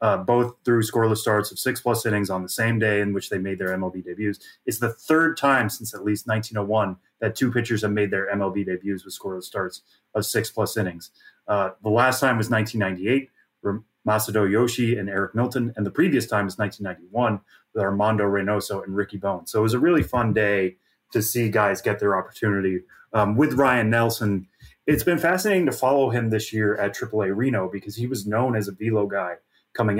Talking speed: 205 wpm